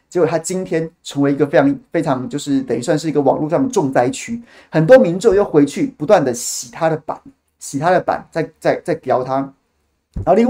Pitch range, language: 145-225 Hz, Chinese